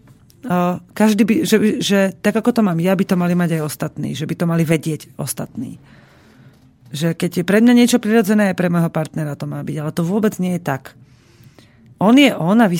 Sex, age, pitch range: female, 40-59, 155-200 Hz